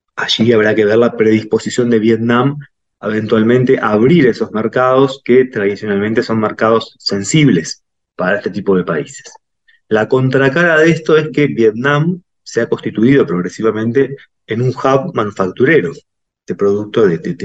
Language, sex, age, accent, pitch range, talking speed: Spanish, male, 20-39, Argentinian, 105-135 Hz, 145 wpm